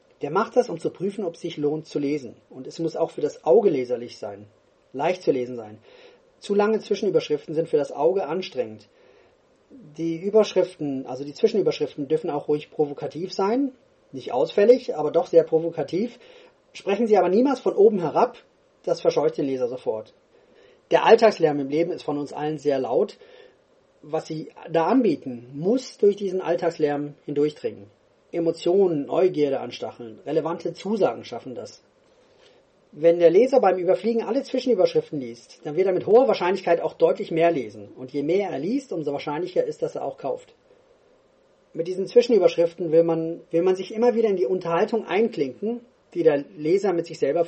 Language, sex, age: English, male, 30-49